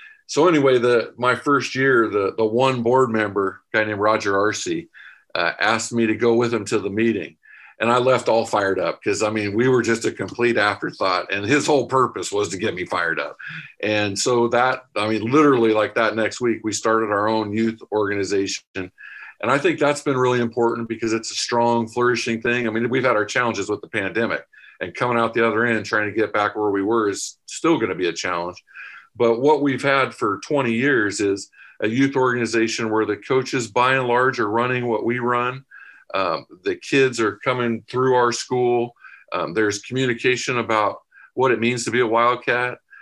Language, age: English, 50-69